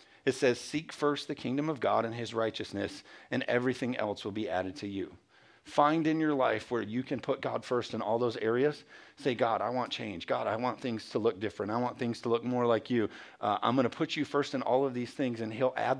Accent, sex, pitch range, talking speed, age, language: American, male, 115-145 Hz, 255 wpm, 40-59, English